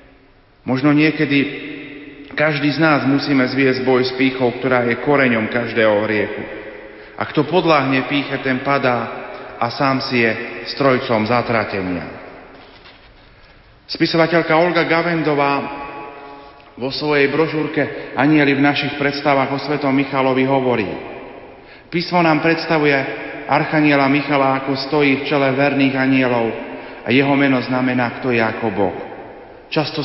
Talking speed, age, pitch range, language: 120 wpm, 40-59, 125-150 Hz, Slovak